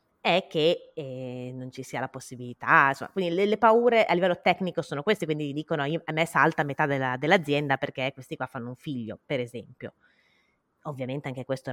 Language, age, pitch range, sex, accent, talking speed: Italian, 20-39, 145-190 Hz, female, native, 190 wpm